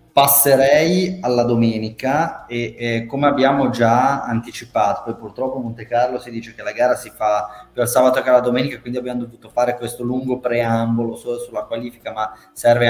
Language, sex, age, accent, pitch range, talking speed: Italian, male, 20-39, native, 120-135 Hz, 175 wpm